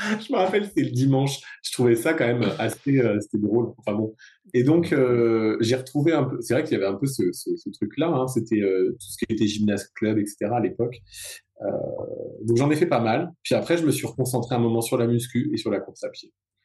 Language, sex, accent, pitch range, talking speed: French, male, French, 105-135 Hz, 255 wpm